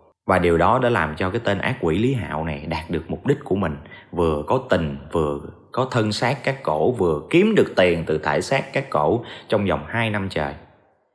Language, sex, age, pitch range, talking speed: Vietnamese, male, 20-39, 80-125 Hz, 225 wpm